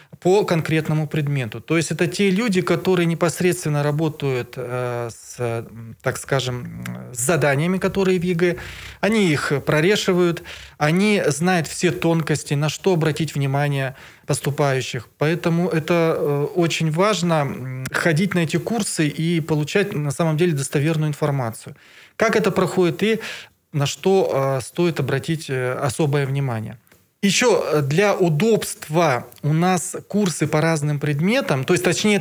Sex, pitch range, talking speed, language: male, 140-185 Hz, 125 wpm, Russian